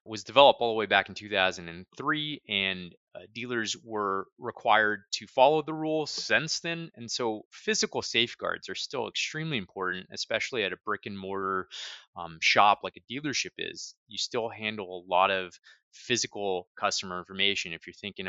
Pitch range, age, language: 90-115 Hz, 20-39, English